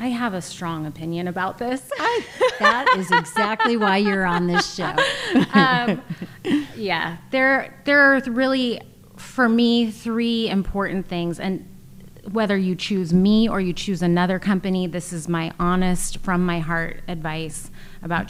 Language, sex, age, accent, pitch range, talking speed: English, female, 30-49, American, 170-215 Hz, 150 wpm